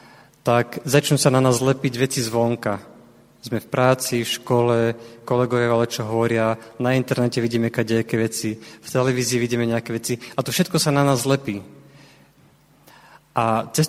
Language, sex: Slovak, male